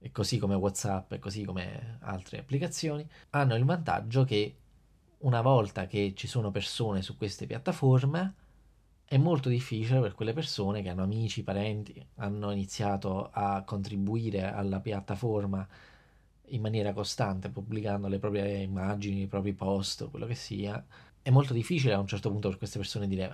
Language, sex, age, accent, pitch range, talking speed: Italian, male, 20-39, native, 95-125 Hz, 160 wpm